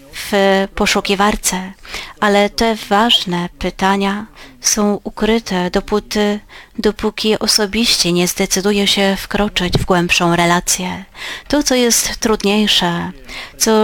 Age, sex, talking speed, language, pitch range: 30-49, female, 100 wpm, Polish, 180-215 Hz